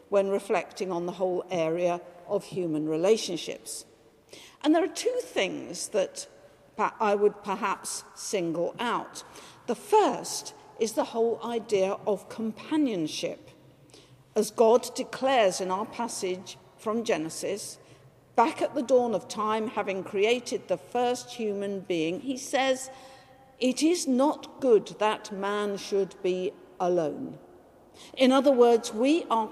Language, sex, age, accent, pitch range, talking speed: English, female, 50-69, British, 190-255 Hz, 130 wpm